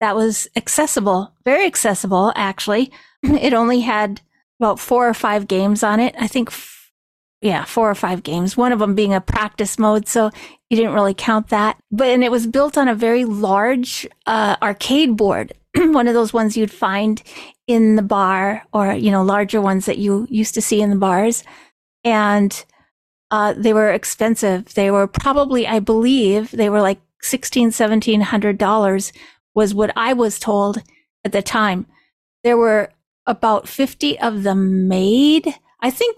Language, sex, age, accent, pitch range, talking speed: English, female, 40-59, American, 200-235 Hz, 175 wpm